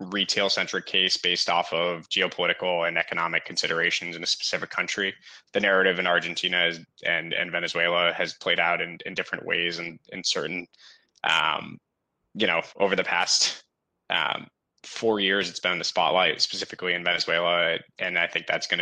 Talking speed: 165 wpm